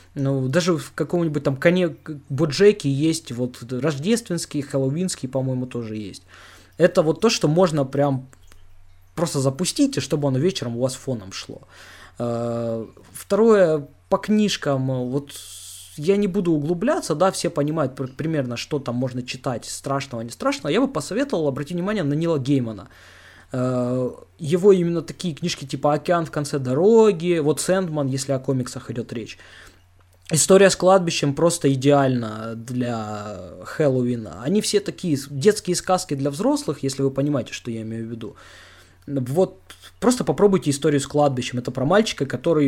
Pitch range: 125-170 Hz